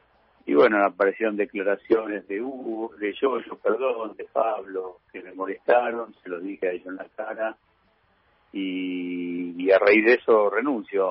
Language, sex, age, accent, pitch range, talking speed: Spanish, male, 50-69, Argentinian, 100-155 Hz, 155 wpm